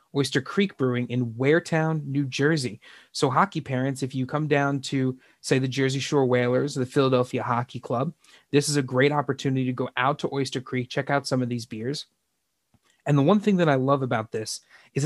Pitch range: 125-145 Hz